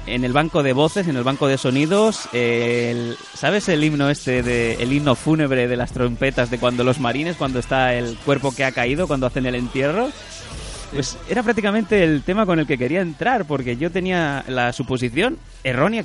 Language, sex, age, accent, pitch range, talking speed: Spanish, male, 30-49, Spanish, 125-165 Hz, 200 wpm